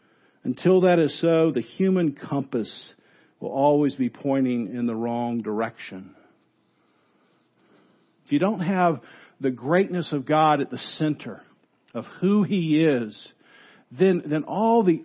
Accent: American